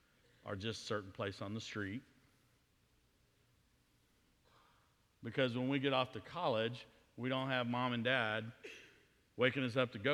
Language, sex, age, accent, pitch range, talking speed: English, male, 50-69, American, 100-130 Hz, 155 wpm